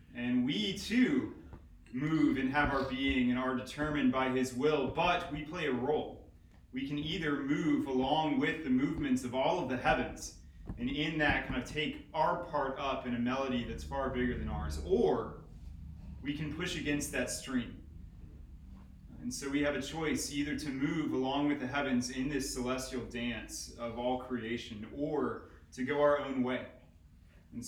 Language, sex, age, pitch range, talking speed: English, male, 30-49, 90-135 Hz, 180 wpm